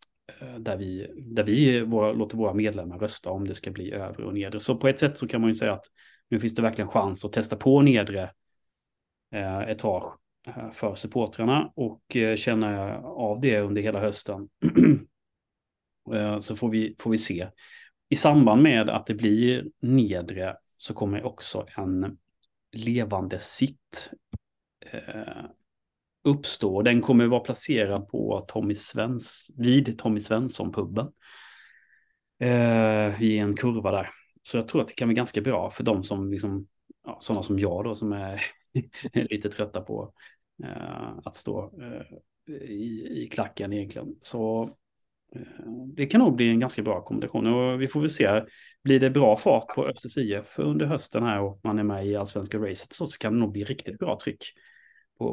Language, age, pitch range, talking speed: Swedish, 30-49, 100-120 Hz, 165 wpm